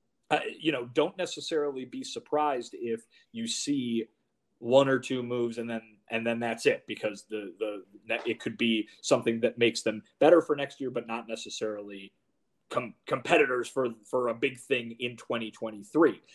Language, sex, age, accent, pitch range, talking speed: English, male, 30-49, American, 115-165 Hz, 170 wpm